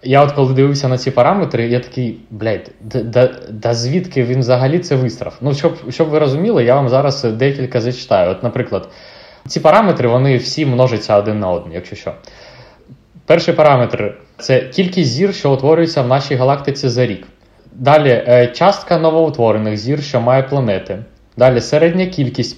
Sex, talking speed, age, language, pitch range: male, 160 wpm, 20-39, Ukrainian, 125-160 Hz